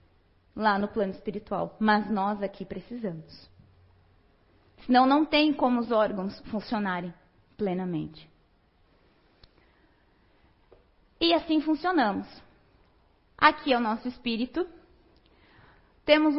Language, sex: Portuguese, female